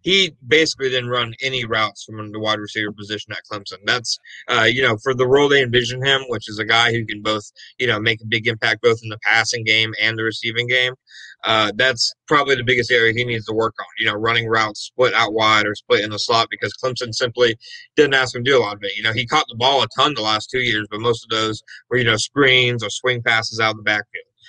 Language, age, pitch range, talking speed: English, 30-49, 110-130 Hz, 260 wpm